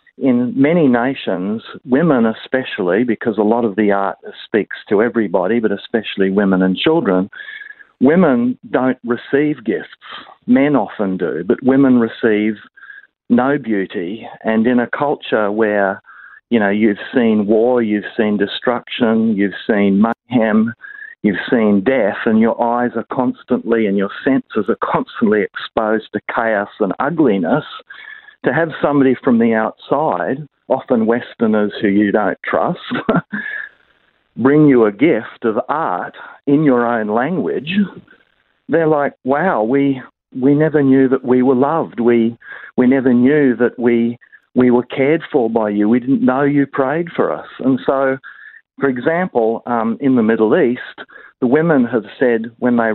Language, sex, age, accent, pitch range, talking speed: English, male, 50-69, Australian, 110-140 Hz, 150 wpm